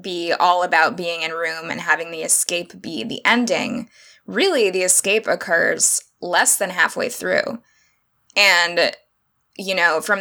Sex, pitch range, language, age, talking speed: female, 175-215 Hz, English, 20-39, 145 wpm